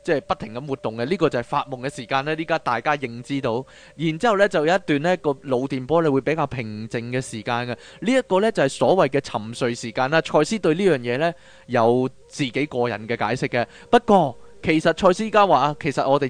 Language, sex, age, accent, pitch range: Chinese, male, 20-39, native, 130-185 Hz